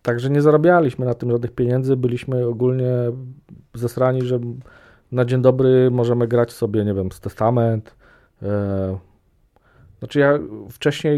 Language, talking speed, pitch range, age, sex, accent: Polish, 130 wpm, 105-130 Hz, 40-59, male, native